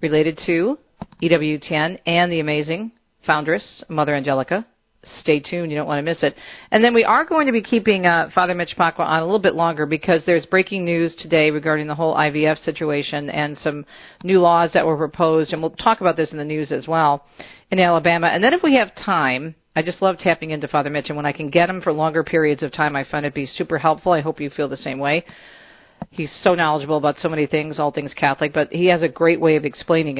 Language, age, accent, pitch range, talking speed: English, 40-59, American, 150-180 Hz, 235 wpm